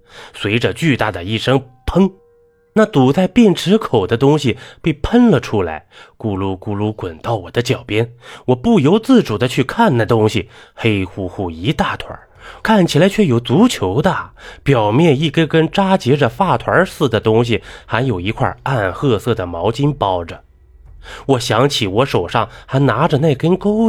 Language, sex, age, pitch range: Chinese, male, 20-39, 105-170 Hz